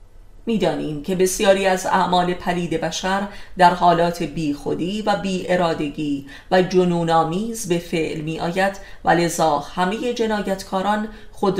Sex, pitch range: female, 165-195 Hz